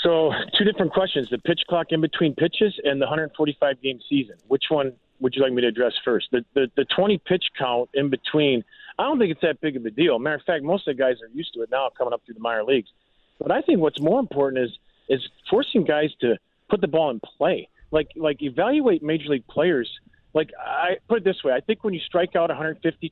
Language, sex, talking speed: English, male, 245 wpm